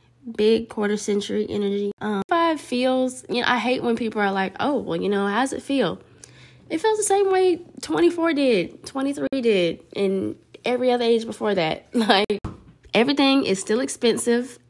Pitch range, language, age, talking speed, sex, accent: 170-235 Hz, English, 10-29, 170 wpm, female, American